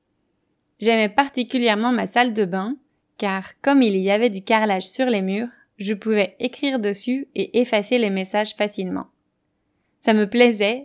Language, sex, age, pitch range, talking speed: French, female, 20-39, 195-235 Hz, 155 wpm